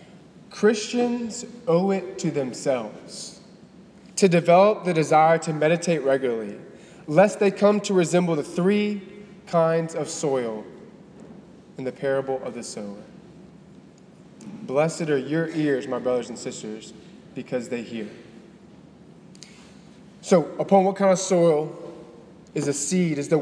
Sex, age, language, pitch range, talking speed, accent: male, 20-39, English, 165-195 Hz, 130 wpm, American